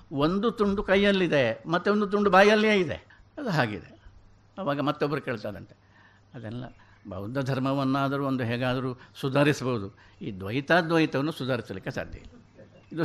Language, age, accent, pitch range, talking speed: Kannada, 60-79, native, 105-160 Hz, 115 wpm